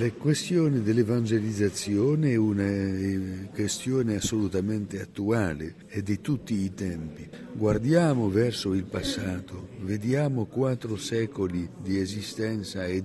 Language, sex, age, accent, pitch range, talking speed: Italian, male, 60-79, native, 95-145 Hz, 105 wpm